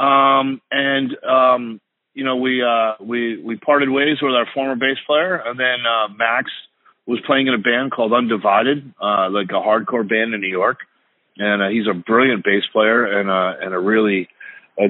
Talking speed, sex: 195 wpm, male